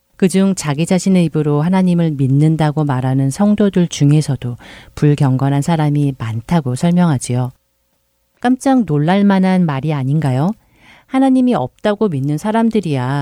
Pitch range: 130-180 Hz